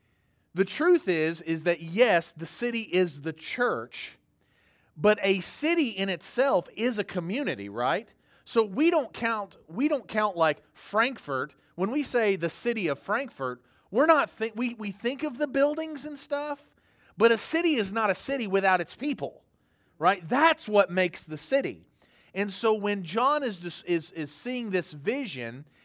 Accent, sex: American, male